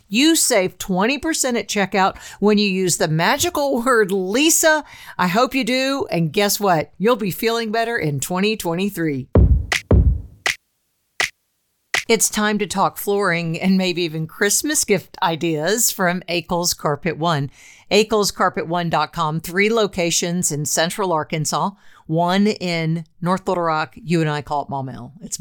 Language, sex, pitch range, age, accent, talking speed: English, female, 170-220 Hz, 50-69, American, 135 wpm